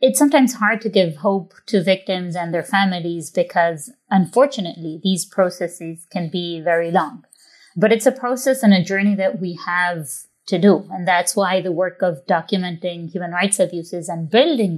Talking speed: 175 wpm